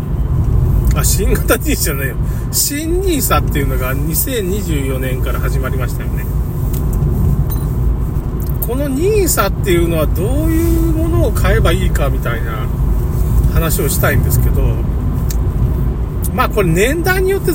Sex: male